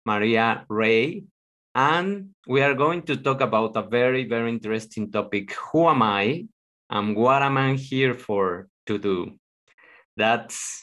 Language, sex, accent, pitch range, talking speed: English, male, Mexican, 110-130 Hz, 145 wpm